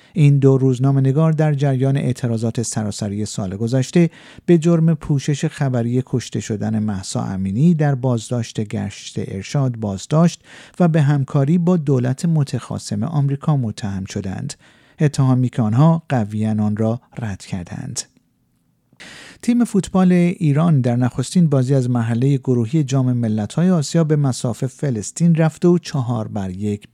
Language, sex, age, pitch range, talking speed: Persian, male, 50-69, 115-155 Hz, 130 wpm